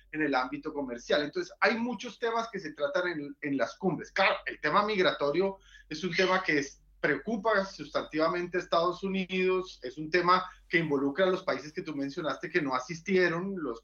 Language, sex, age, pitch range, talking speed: Spanish, male, 30-49, 155-190 Hz, 190 wpm